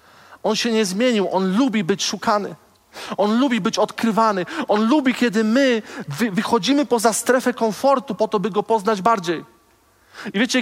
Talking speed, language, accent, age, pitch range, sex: 165 wpm, Polish, native, 40-59, 185-240 Hz, male